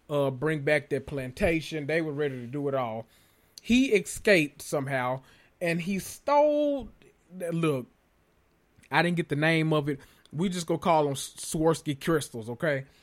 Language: English